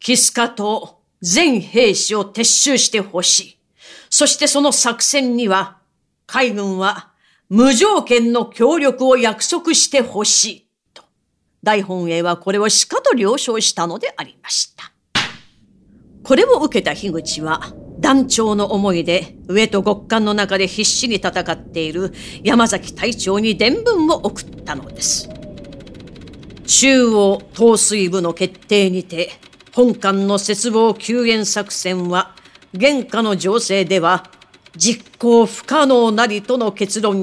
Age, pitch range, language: 40-59, 195-245 Hz, Japanese